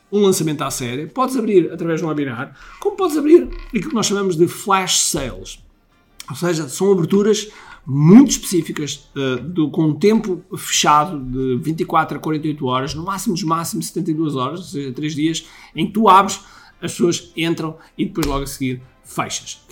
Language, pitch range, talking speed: Portuguese, 155-220 Hz, 175 wpm